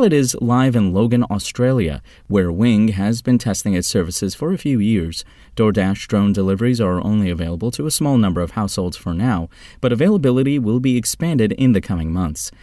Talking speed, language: 190 wpm, English